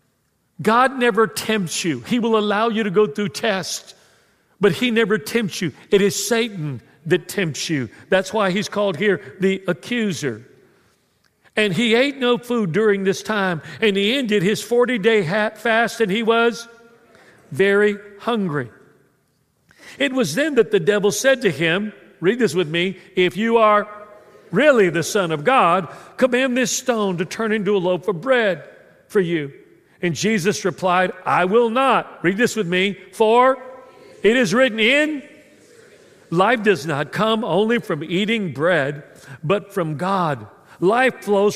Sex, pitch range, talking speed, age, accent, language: male, 185-235 Hz, 160 wpm, 50-69, American, English